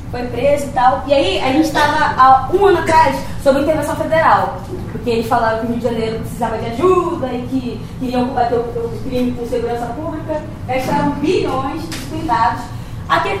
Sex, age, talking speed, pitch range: female, 20-39, 190 wpm, 255-315 Hz